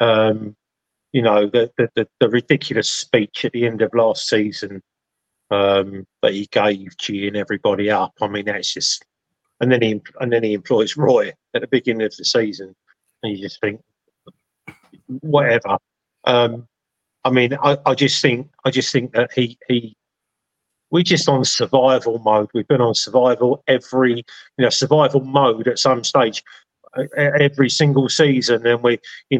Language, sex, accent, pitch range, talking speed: English, male, British, 110-130 Hz, 165 wpm